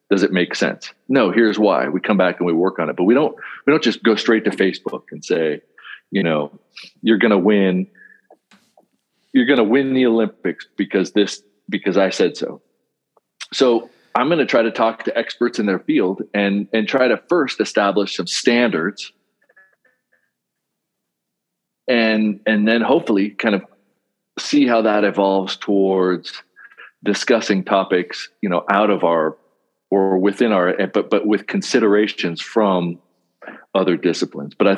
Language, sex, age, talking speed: English, male, 40-59, 165 wpm